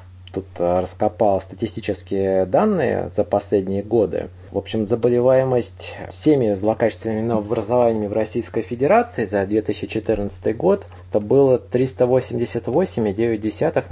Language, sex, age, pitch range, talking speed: Russian, male, 20-39, 95-120 Hz, 95 wpm